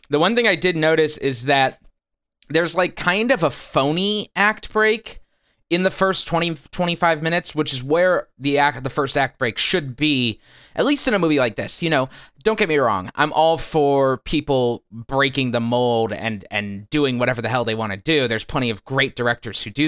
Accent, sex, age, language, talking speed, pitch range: American, male, 20-39, English, 215 wpm, 110-160 Hz